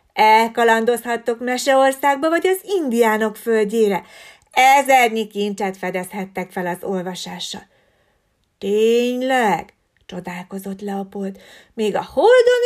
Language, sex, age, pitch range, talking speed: Hungarian, female, 30-49, 200-275 Hz, 85 wpm